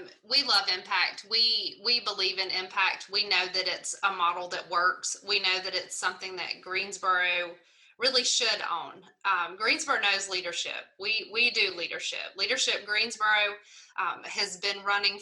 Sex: female